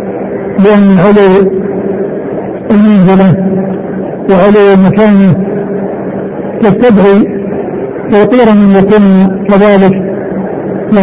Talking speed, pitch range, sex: 55 wpm, 195-210 Hz, male